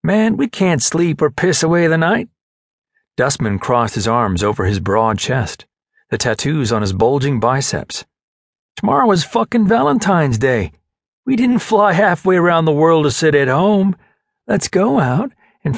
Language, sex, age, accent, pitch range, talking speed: English, male, 40-59, American, 110-170 Hz, 165 wpm